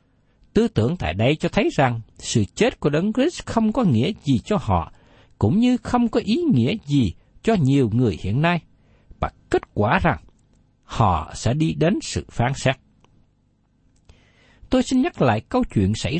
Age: 60-79